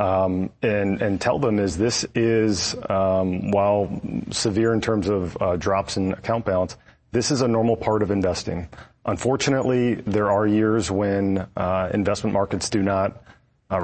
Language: English